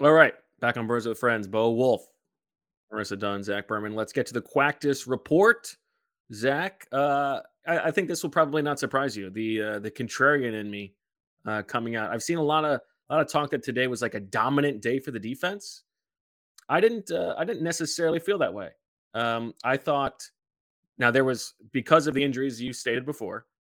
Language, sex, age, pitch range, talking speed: English, male, 20-39, 110-140 Hz, 200 wpm